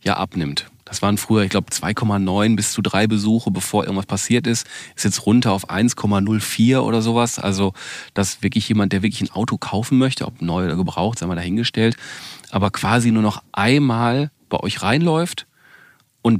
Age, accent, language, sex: 40-59, German, German, male